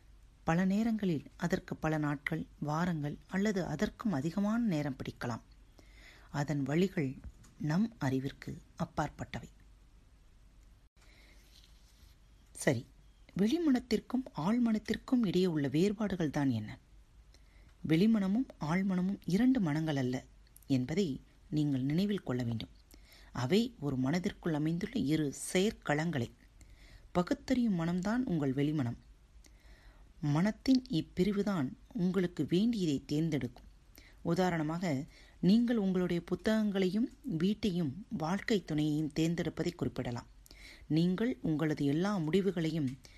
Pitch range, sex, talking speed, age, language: 140-200 Hz, female, 85 wpm, 30-49, Tamil